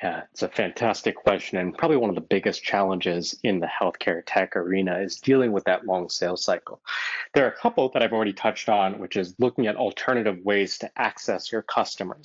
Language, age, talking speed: English, 30-49, 210 wpm